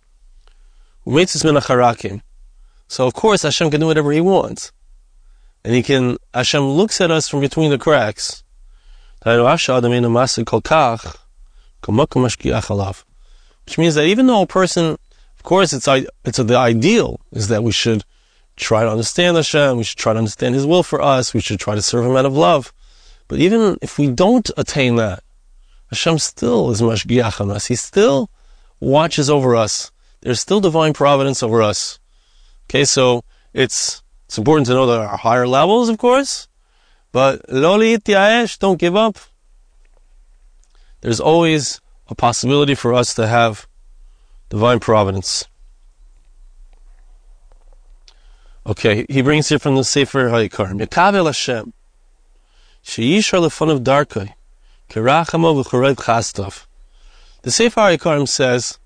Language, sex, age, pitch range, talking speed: English, male, 30-49, 115-160 Hz, 125 wpm